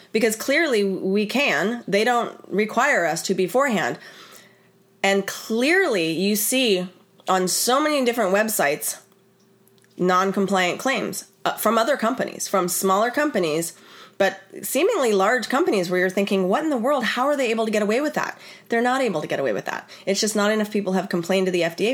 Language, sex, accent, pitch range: English, female, American, 180-225 Hz